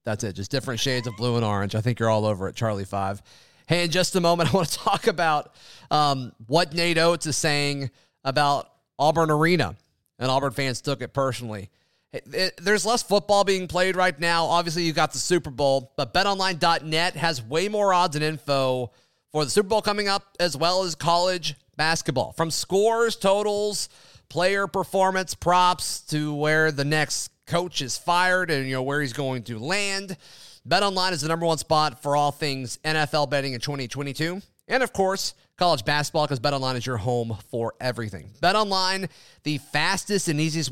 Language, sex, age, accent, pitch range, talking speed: English, male, 30-49, American, 135-185 Hz, 190 wpm